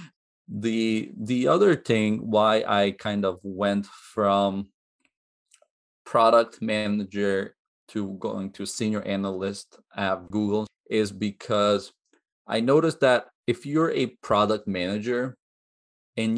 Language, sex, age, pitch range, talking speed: English, male, 30-49, 100-120 Hz, 110 wpm